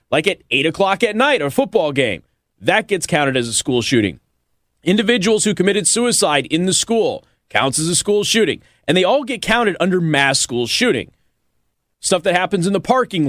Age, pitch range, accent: 30-49, 130-200 Hz, American